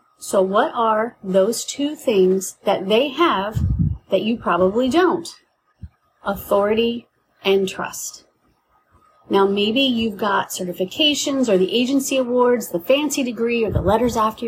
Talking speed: 135 wpm